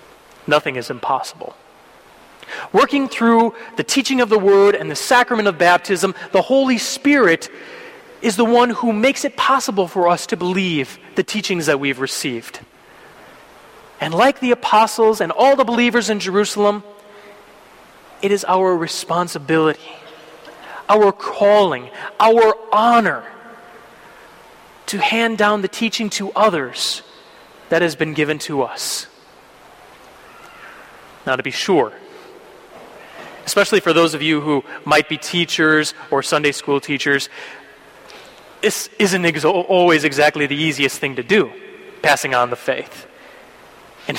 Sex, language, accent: male, English, American